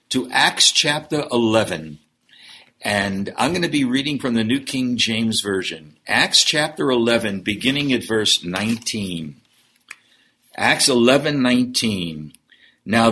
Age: 60-79